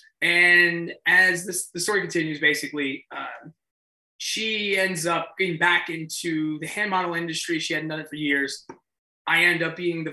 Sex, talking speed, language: male, 165 wpm, English